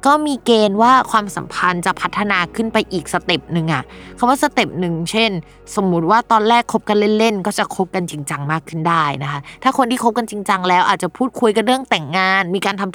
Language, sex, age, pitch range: Thai, female, 20-39, 170-220 Hz